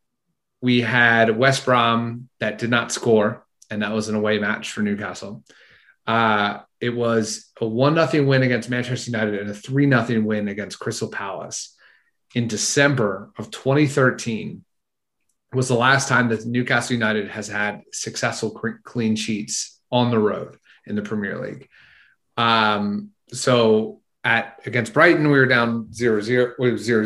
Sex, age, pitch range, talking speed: male, 30-49, 110-130 Hz, 155 wpm